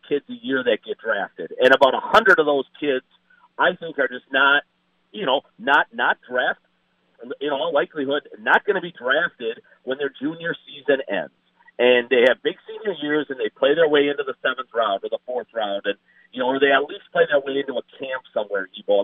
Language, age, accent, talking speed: English, 50-69, American, 220 wpm